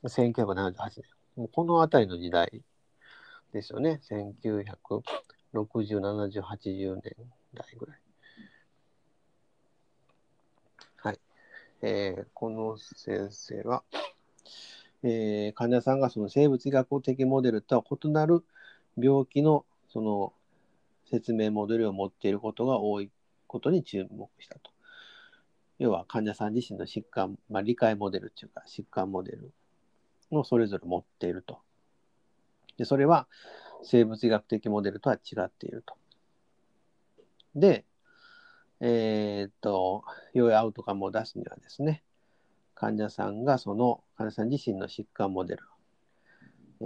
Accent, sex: native, male